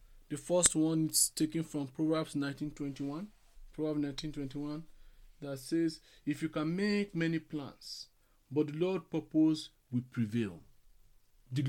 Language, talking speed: English, 130 wpm